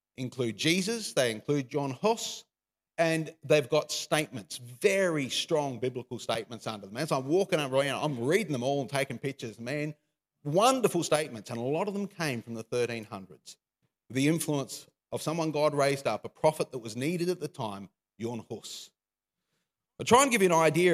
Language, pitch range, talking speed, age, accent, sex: English, 130-170 Hz, 180 wpm, 40-59, Australian, male